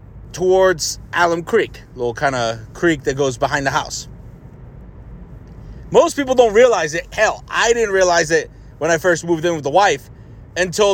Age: 30-49